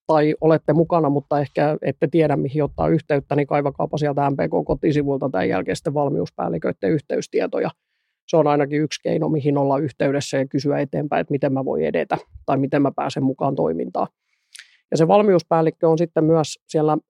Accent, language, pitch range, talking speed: native, Finnish, 140-160 Hz, 165 wpm